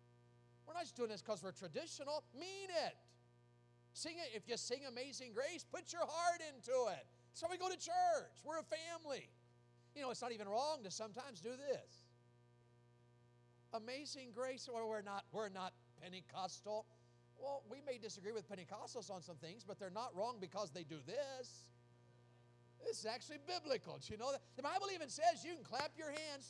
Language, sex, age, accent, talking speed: English, male, 50-69, American, 180 wpm